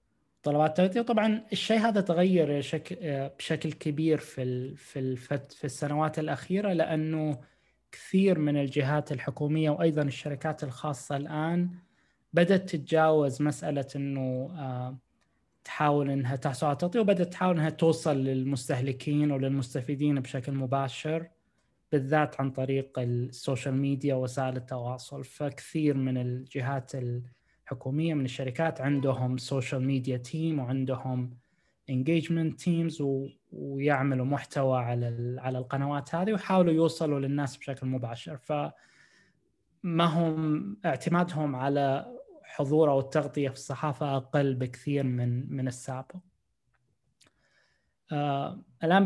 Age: 20-39